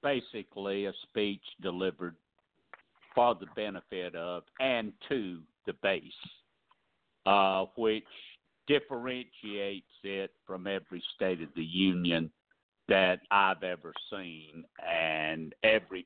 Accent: American